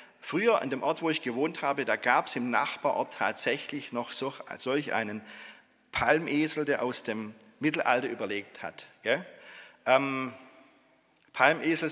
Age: 40-59